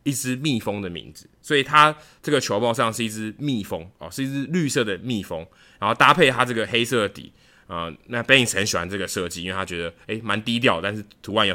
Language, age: Chinese, 20-39